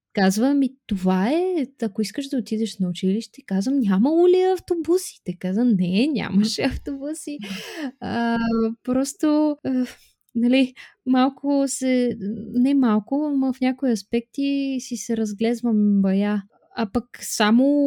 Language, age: Bulgarian, 20-39